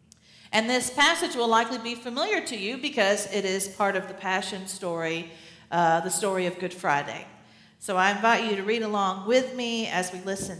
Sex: female